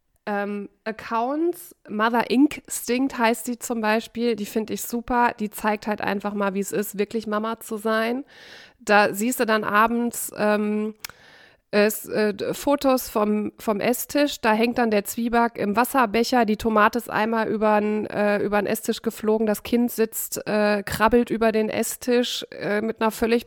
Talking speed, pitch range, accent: 160 wpm, 210-240 Hz, German